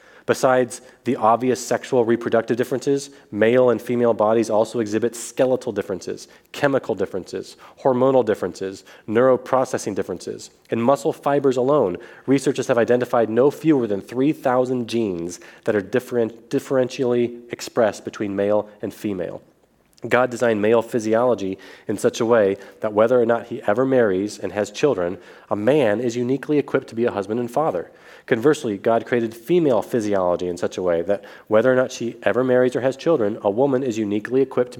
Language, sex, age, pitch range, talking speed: English, male, 30-49, 110-130 Hz, 160 wpm